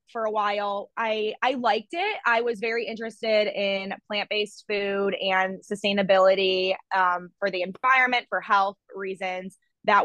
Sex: female